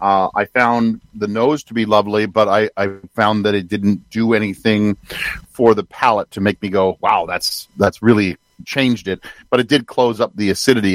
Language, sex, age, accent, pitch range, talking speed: English, male, 50-69, American, 105-125 Hz, 205 wpm